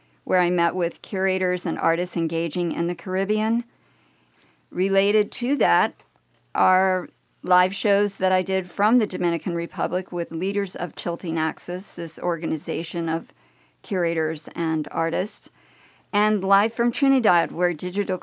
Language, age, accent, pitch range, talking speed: English, 50-69, American, 170-200 Hz, 135 wpm